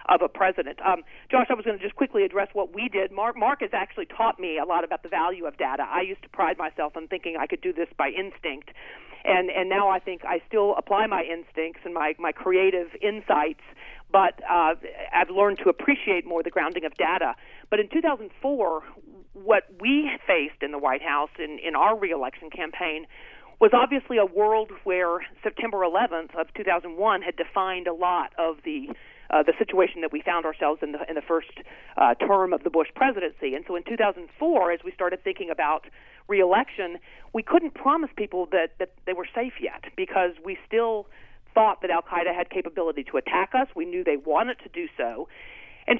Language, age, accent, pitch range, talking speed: English, 40-59, American, 175-245 Hz, 200 wpm